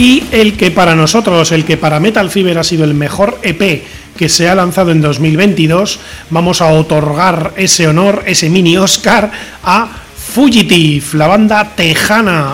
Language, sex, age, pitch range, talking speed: Spanish, male, 30-49, 160-200 Hz, 165 wpm